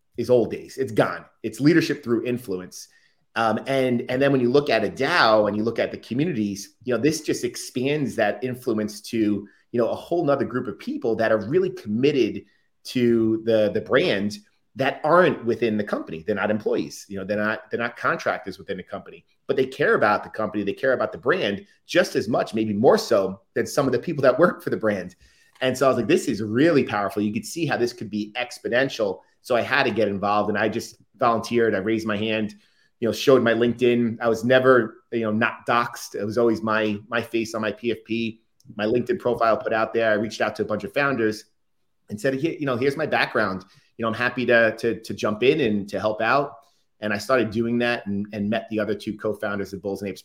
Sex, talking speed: male, 235 wpm